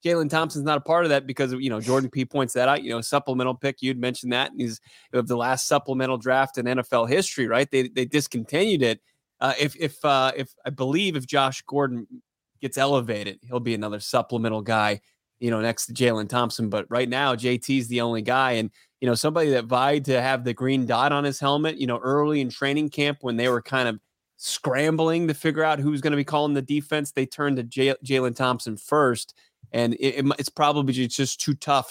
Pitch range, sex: 120-140 Hz, male